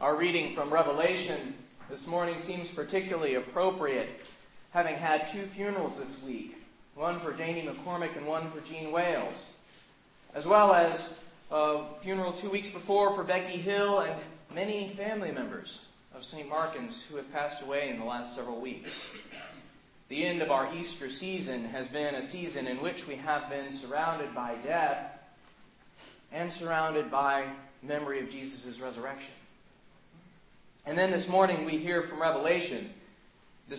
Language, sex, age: English, male, 40-59